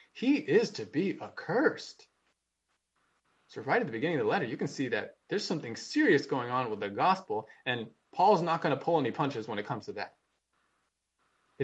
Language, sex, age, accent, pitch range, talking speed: English, male, 20-39, American, 155-240 Hz, 200 wpm